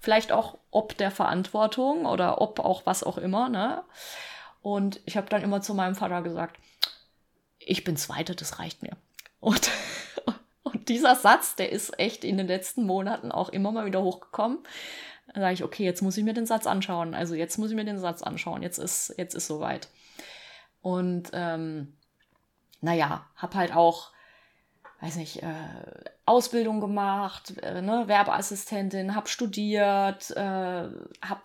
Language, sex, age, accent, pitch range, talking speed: German, female, 30-49, German, 180-210 Hz, 160 wpm